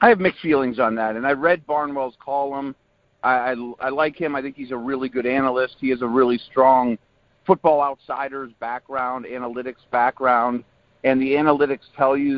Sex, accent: male, American